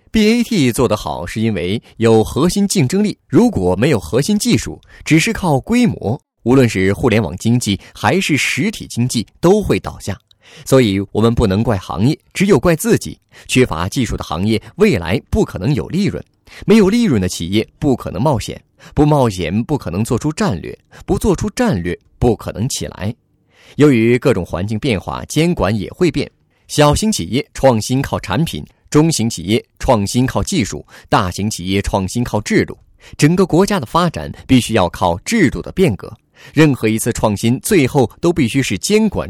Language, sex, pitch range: Chinese, male, 105-155 Hz